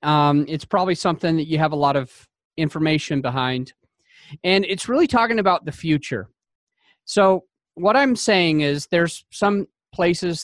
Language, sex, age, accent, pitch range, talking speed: English, male, 30-49, American, 155-195 Hz, 155 wpm